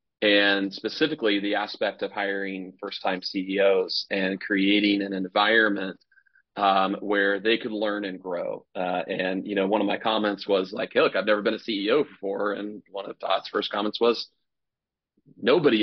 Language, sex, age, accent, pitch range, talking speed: English, male, 30-49, American, 100-110 Hz, 170 wpm